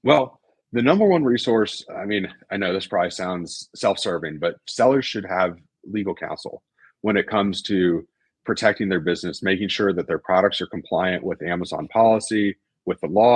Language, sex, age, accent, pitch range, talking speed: English, male, 30-49, American, 90-110 Hz, 175 wpm